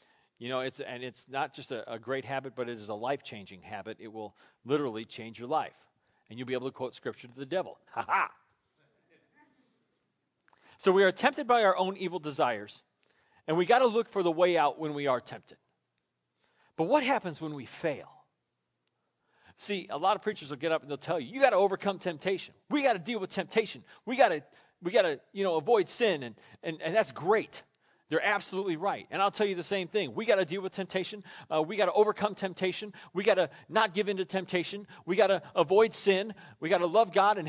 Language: English